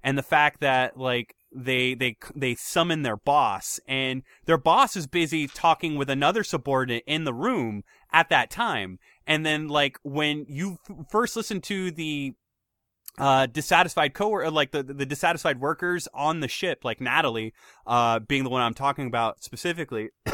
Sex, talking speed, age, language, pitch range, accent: male, 170 wpm, 20-39, English, 135-170 Hz, American